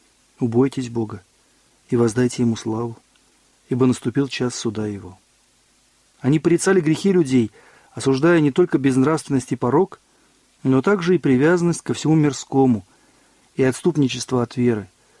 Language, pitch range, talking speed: Russian, 125-160 Hz, 125 wpm